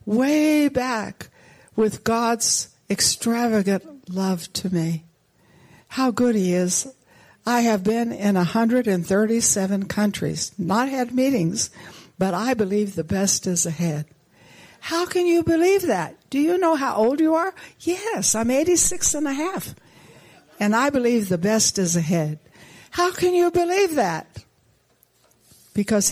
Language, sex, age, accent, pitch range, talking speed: English, female, 60-79, American, 175-255 Hz, 135 wpm